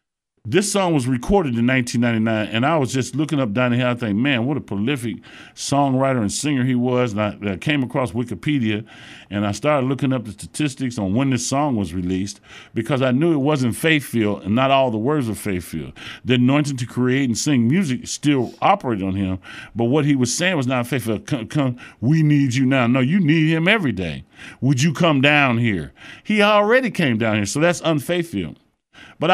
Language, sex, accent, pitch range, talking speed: English, male, American, 110-150 Hz, 210 wpm